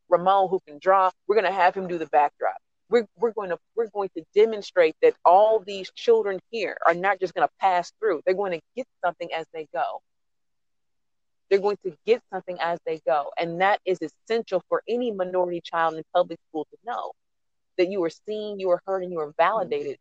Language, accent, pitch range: English, American, 175-210 Hz